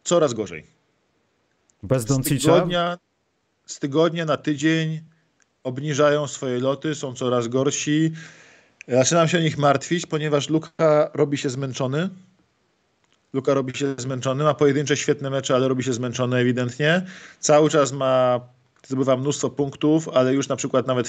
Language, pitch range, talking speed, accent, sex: Polish, 125-150 Hz, 135 wpm, native, male